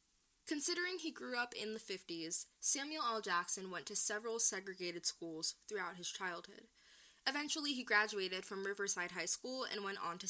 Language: English